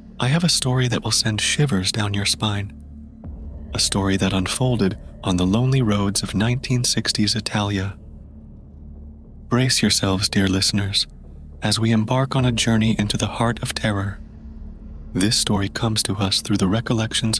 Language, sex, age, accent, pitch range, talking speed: English, male, 30-49, American, 95-115 Hz, 155 wpm